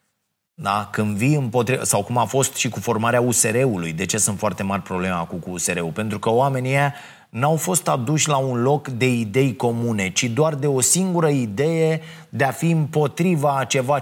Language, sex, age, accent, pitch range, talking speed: Romanian, male, 30-49, native, 125-170 Hz, 190 wpm